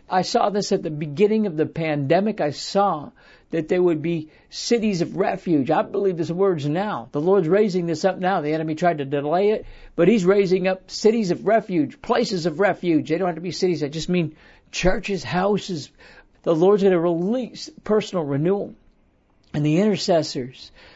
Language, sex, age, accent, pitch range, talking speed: English, male, 60-79, American, 155-200 Hz, 190 wpm